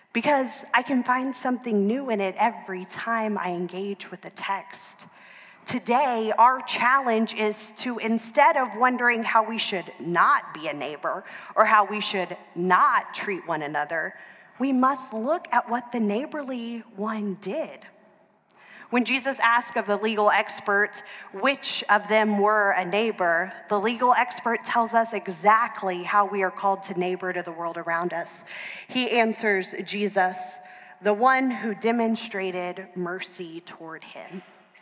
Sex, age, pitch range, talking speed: female, 30-49, 190-235 Hz, 150 wpm